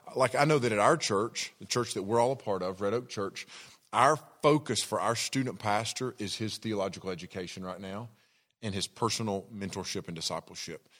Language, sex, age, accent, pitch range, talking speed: English, male, 40-59, American, 105-130 Hz, 195 wpm